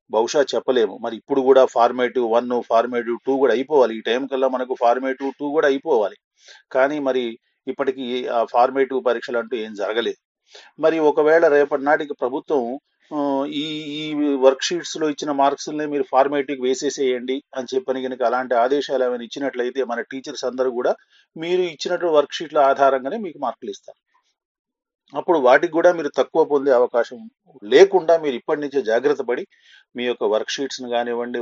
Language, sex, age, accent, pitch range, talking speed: Telugu, male, 40-59, native, 125-150 Hz, 150 wpm